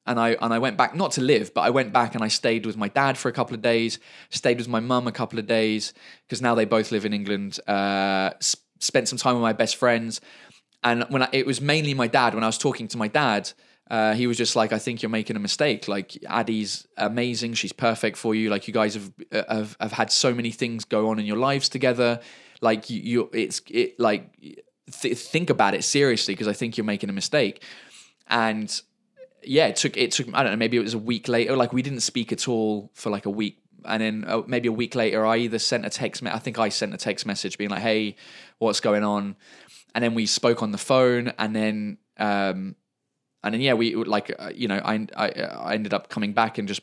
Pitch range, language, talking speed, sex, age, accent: 105-120 Hz, English, 240 wpm, male, 20-39, British